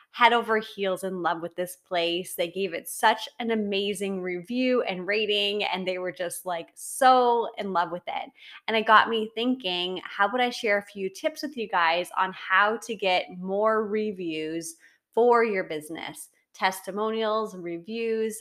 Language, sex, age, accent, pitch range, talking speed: English, female, 20-39, American, 180-220 Hz, 175 wpm